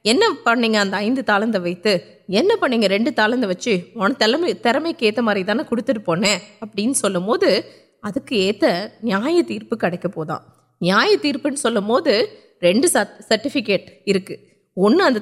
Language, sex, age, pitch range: Urdu, female, 20-39, 195-255 Hz